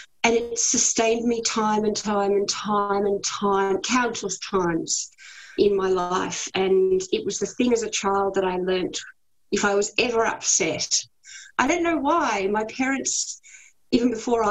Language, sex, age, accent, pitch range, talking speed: English, female, 40-59, Australian, 185-225 Hz, 165 wpm